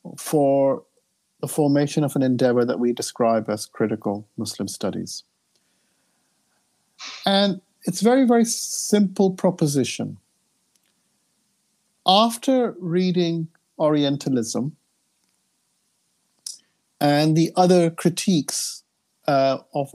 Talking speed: 85 wpm